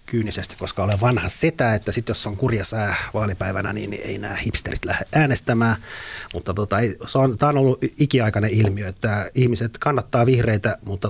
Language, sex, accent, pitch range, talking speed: Finnish, male, native, 100-115 Hz, 170 wpm